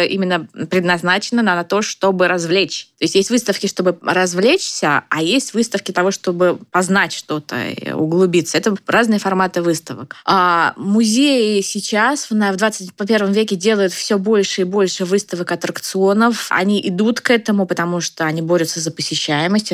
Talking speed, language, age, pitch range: 145 wpm, Russian, 20-39, 175-220 Hz